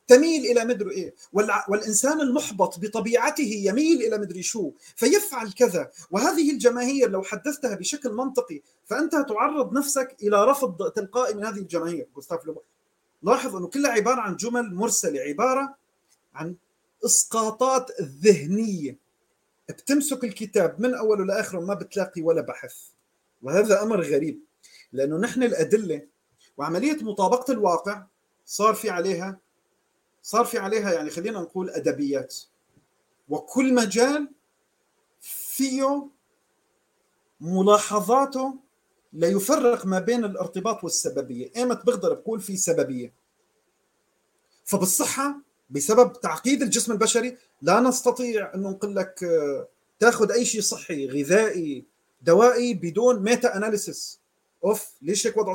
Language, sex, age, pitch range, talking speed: Arabic, male, 40-59, 190-255 Hz, 115 wpm